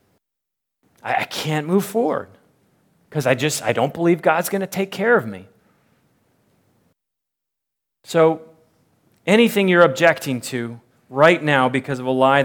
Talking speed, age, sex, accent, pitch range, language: 135 wpm, 40-59, male, American, 145-200 Hz, English